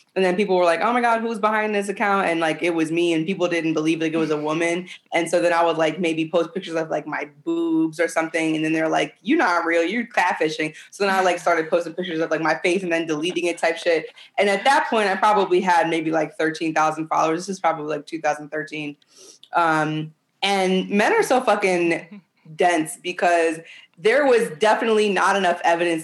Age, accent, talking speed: 20-39, American, 225 wpm